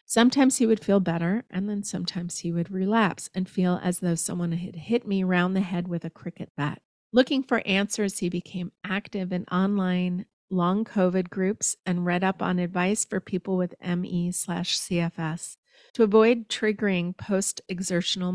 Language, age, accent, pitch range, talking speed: English, 40-59, American, 175-220 Hz, 165 wpm